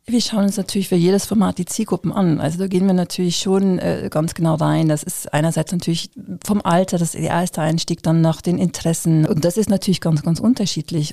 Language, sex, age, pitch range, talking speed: German, female, 40-59, 165-190 Hz, 225 wpm